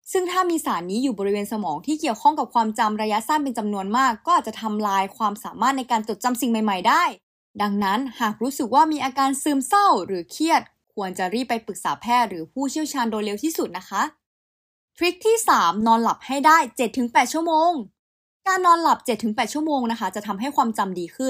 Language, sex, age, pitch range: Thai, female, 20-39, 210-295 Hz